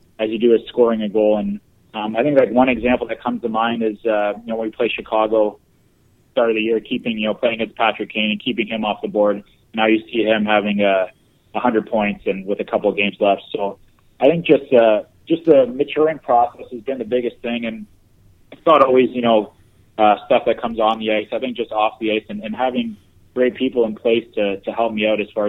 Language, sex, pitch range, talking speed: English, male, 105-115 Hz, 250 wpm